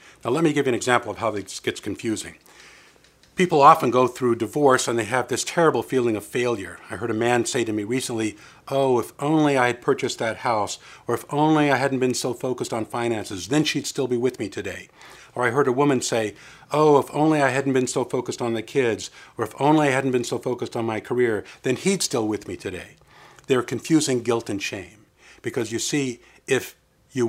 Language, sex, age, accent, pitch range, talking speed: English, male, 50-69, American, 110-145 Hz, 225 wpm